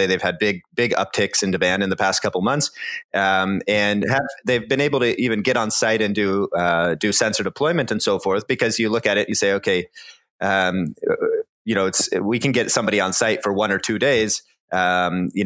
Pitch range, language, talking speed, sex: 95-130 Hz, English, 220 wpm, male